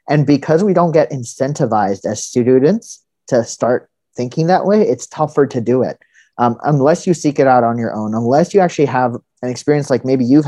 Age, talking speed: 30-49, 205 wpm